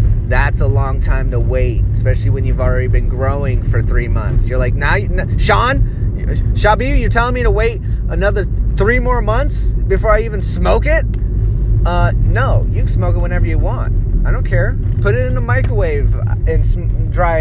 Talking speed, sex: 195 wpm, male